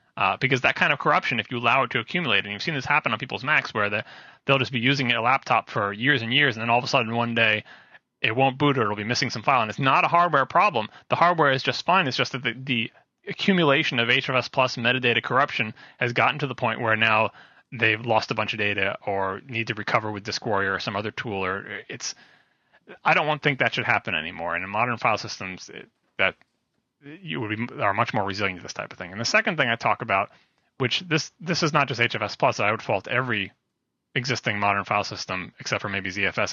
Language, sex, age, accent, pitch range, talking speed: English, male, 30-49, American, 110-140 Hz, 245 wpm